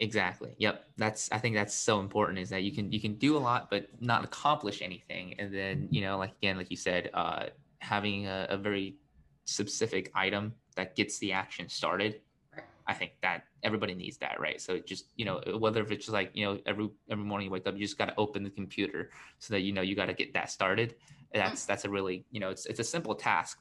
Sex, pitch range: male, 95-110 Hz